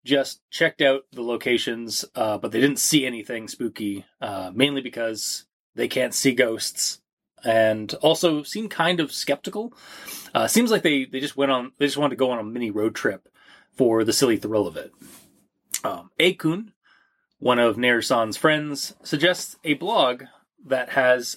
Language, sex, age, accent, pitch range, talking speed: English, male, 30-49, American, 125-160 Hz, 170 wpm